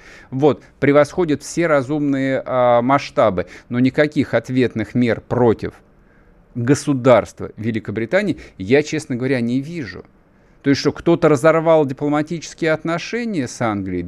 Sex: male